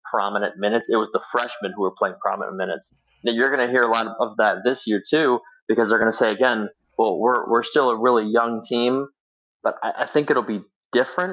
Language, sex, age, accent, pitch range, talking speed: English, male, 20-39, American, 105-125 Hz, 240 wpm